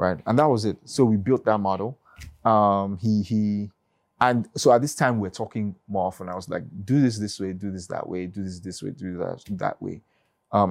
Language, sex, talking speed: English, male, 235 wpm